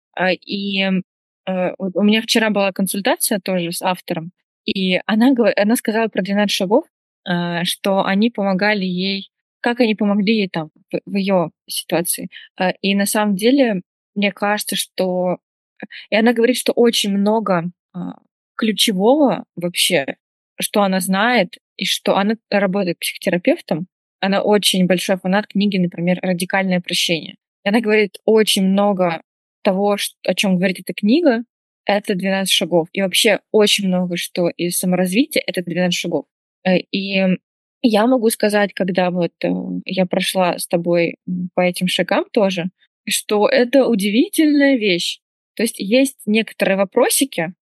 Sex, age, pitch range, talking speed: female, 20-39, 185-215 Hz, 135 wpm